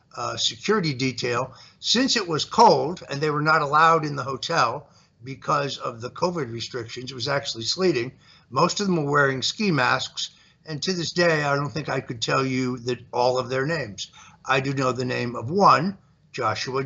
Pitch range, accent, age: 130-165 Hz, American, 60-79